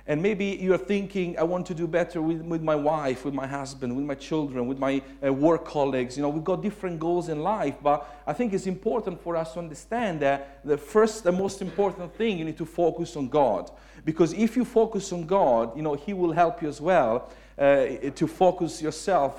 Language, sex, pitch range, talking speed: English, male, 145-185 Hz, 225 wpm